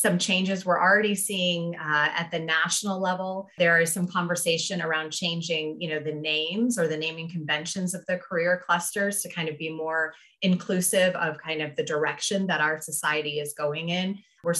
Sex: female